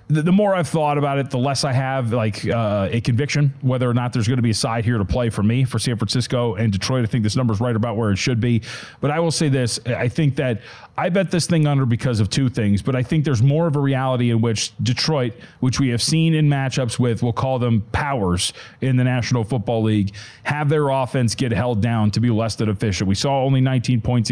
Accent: American